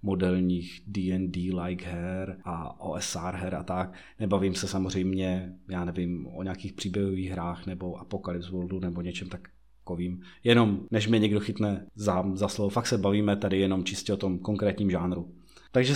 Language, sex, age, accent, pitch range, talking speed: Czech, male, 30-49, native, 95-115 Hz, 160 wpm